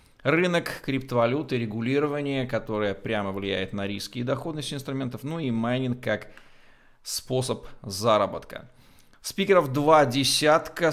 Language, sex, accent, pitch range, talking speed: Russian, male, native, 105-130 Hz, 110 wpm